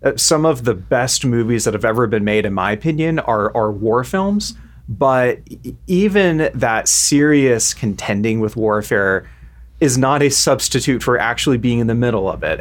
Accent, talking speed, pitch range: American, 170 wpm, 105-135 Hz